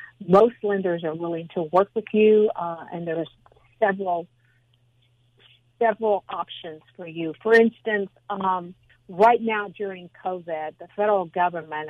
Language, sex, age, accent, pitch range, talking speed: English, female, 50-69, American, 165-205 Hz, 130 wpm